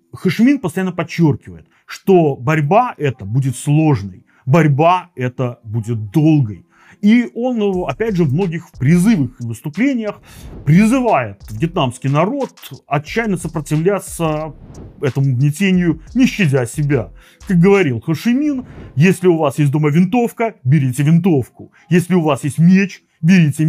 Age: 30-49